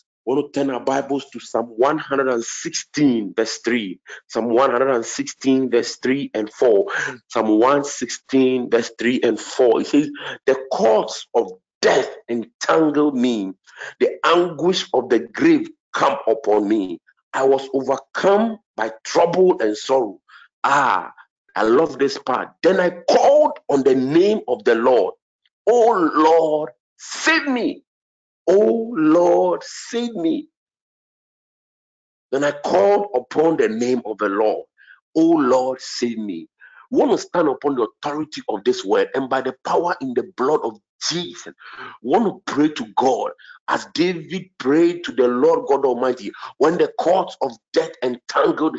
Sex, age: male, 50-69